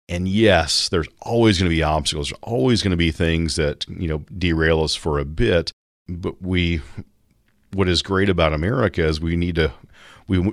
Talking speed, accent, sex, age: 195 wpm, American, male, 40-59